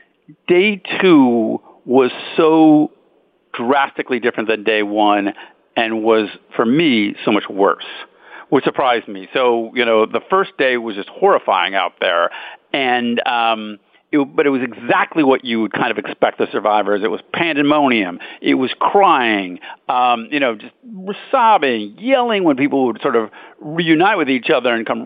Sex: male